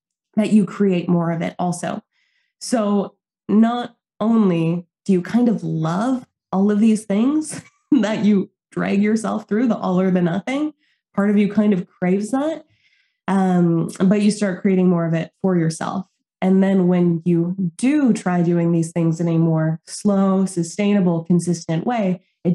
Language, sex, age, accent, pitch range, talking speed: English, female, 20-39, American, 170-215 Hz, 170 wpm